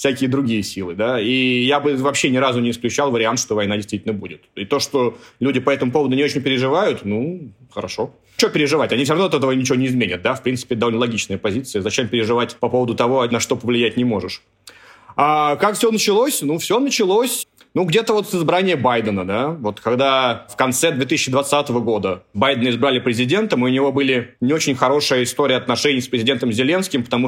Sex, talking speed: male, 200 wpm